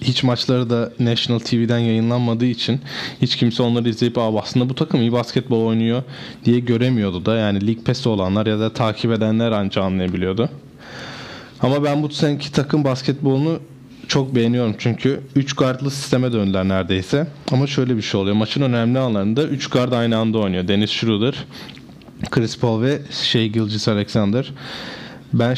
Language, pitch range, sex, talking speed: Turkish, 115-130 Hz, male, 155 wpm